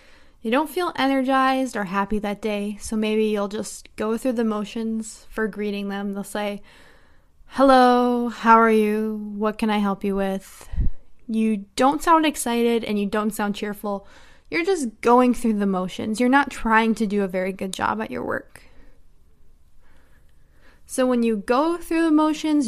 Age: 20-39